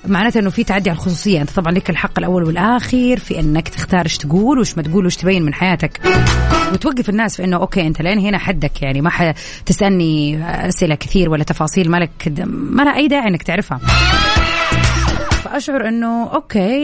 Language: Arabic